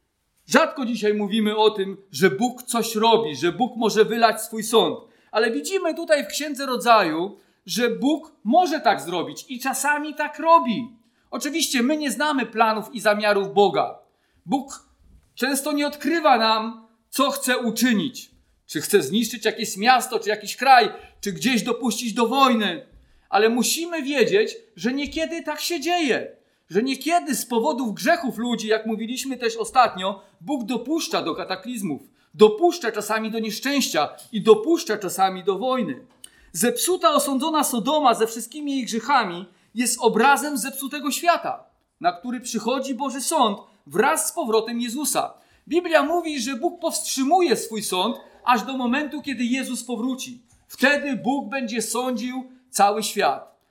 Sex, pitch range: male, 220-295 Hz